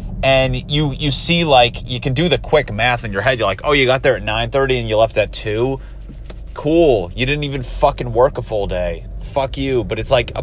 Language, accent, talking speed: English, American, 240 wpm